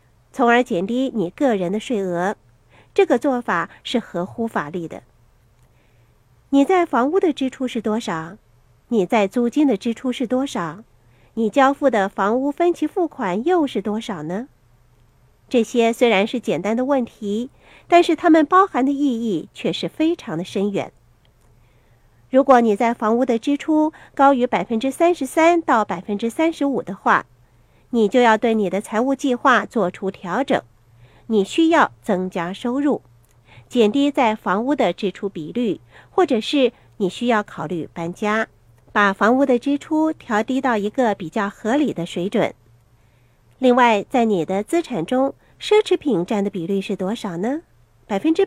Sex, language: female, Chinese